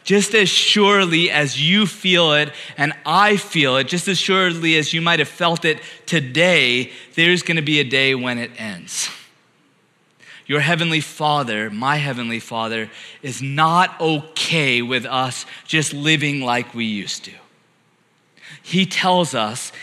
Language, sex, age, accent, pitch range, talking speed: English, male, 30-49, American, 135-165 Hz, 145 wpm